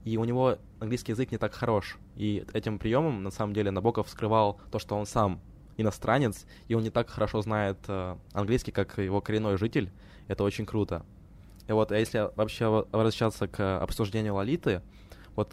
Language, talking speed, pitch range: Ukrainian, 170 wpm, 95-110 Hz